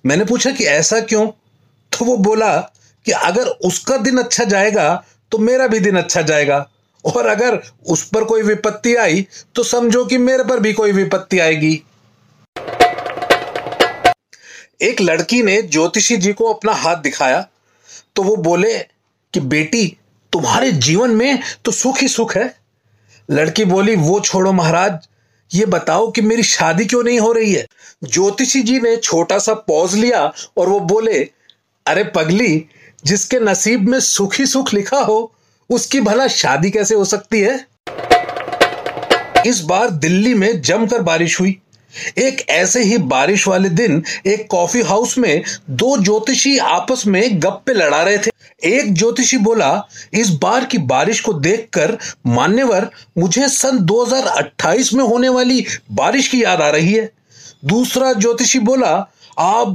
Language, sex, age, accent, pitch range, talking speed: Hindi, male, 40-59, native, 185-250 Hz, 150 wpm